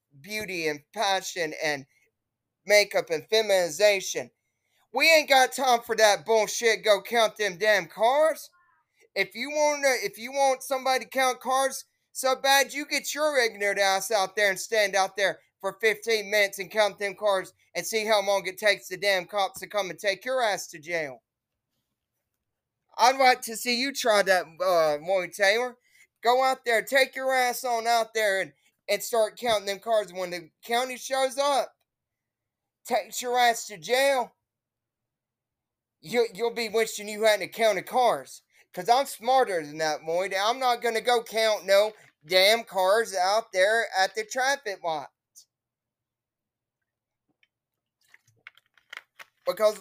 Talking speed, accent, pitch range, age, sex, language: 155 wpm, American, 190-245 Hz, 20-39, male, English